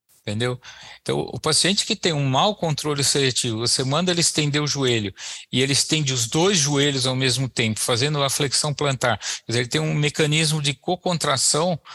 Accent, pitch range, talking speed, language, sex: Brazilian, 120-150 Hz, 185 wpm, Portuguese, male